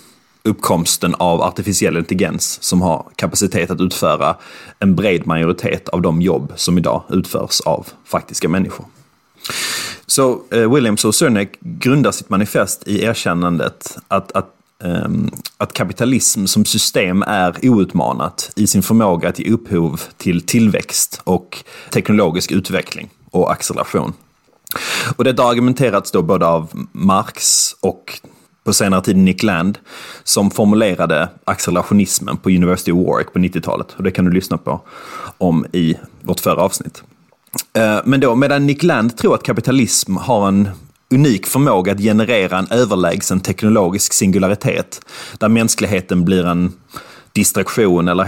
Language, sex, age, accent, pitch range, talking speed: English, male, 30-49, Swedish, 90-115 Hz, 130 wpm